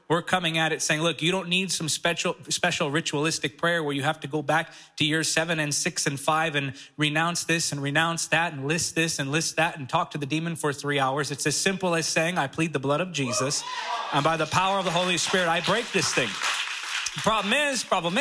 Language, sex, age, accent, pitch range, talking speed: English, male, 30-49, American, 155-200 Hz, 245 wpm